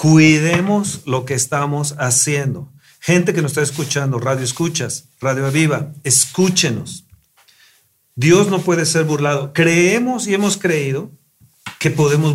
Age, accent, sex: 40-59, Mexican, male